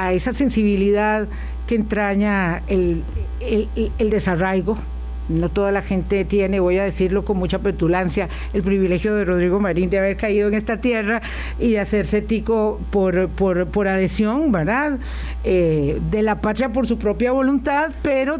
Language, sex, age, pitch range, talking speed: Spanish, female, 50-69, 185-230 Hz, 155 wpm